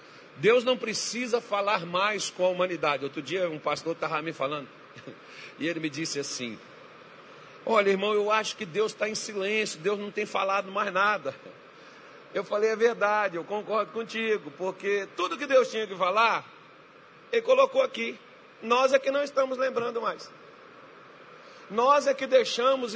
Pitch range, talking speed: 195-265 Hz, 165 wpm